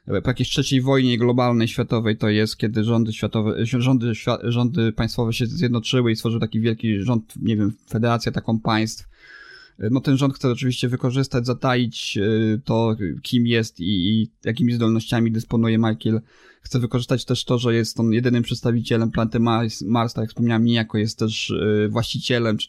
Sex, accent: male, native